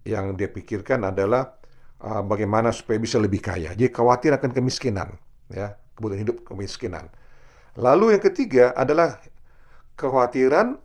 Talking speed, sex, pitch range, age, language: 125 wpm, male, 95-130 Hz, 50-69, Indonesian